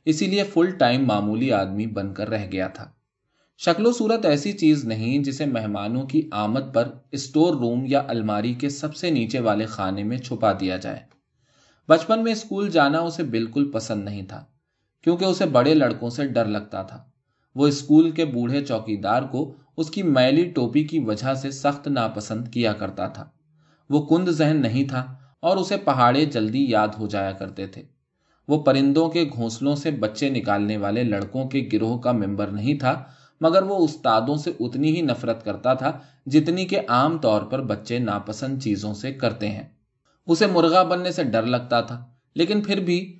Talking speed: 175 wpm